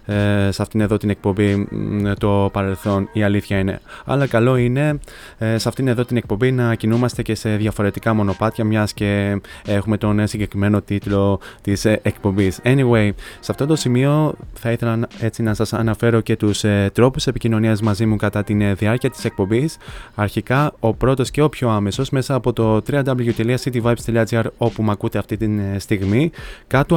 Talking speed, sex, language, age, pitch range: 160 wpm, male, Greek, 20-39, 105-120 Hz